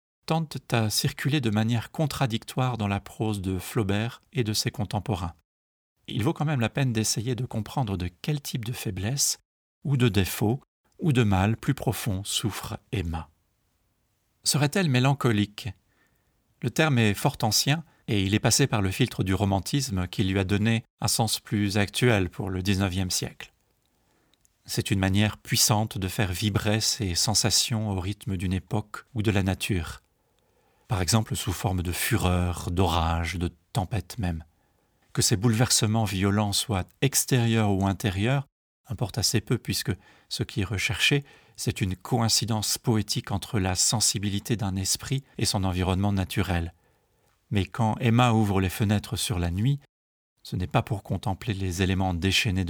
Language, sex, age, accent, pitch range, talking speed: French, male, 40-59, French, 95-120 Hz, 160 wpm